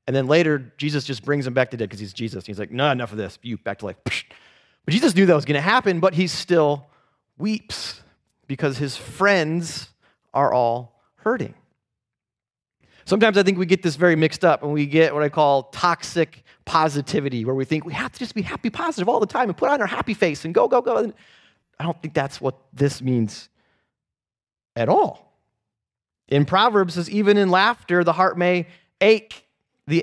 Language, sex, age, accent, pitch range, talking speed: English, male, 30-49, American, 125-175 Hz, 205 wpm